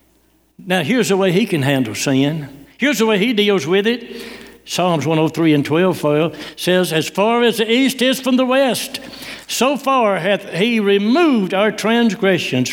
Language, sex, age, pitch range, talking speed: English, male, 60-79, 185-250 Hz, 170 wpm